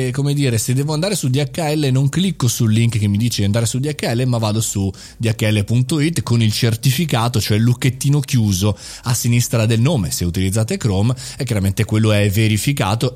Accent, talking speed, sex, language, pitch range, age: native, 185 wpm, male, Italian, 110-150 Hz, 30-49